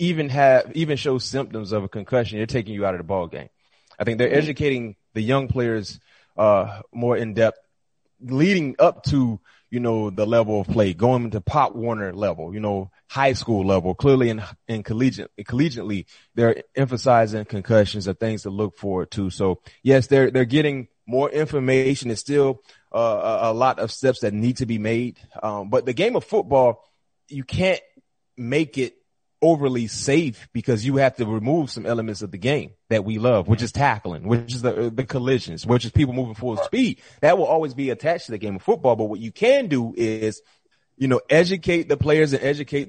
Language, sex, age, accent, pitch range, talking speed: English, male, 30-49, American, 110-135 Hz, 195 wpm